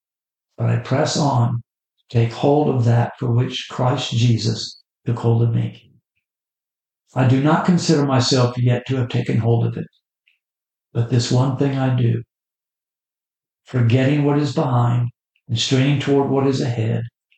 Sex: male